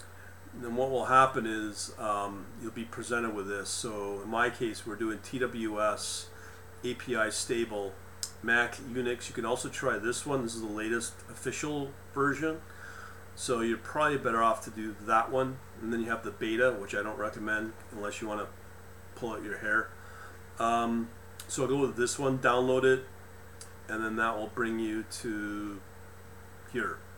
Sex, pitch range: male, 95-120 Hz